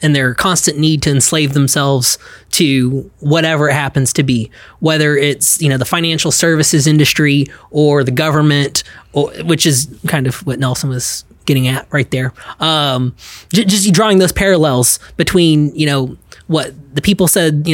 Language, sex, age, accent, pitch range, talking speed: English, male, 20-39, American, 140-175 Hz, 160 wpm